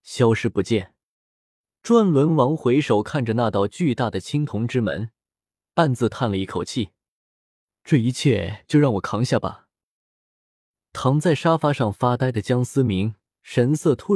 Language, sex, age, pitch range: Chinese, male, 20-39, 110-155 Hz